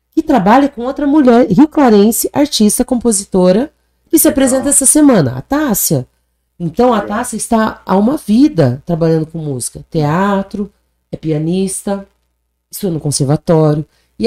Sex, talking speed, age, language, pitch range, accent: female, 135 wpm, 40-59, Portuguese, 155-220 Hz, Brazilian